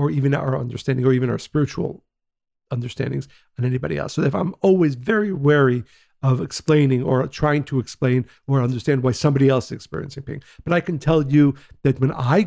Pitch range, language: 125-145 Hz, English